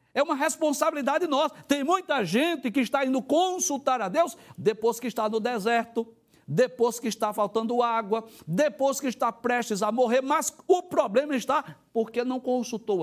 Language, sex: Portuguese, male